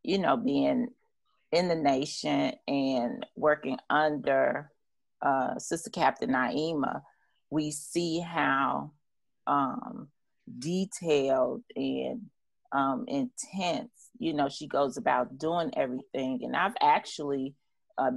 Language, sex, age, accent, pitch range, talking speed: English, female, 30-49, American, 140-185 Hz, 105 wpm